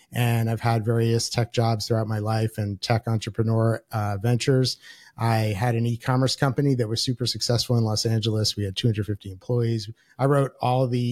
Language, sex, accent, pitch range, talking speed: English, male, American, 105-120 Hz, 185 wpm